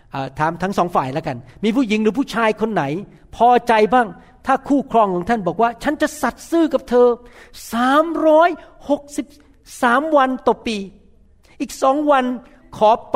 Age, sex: 60-79, male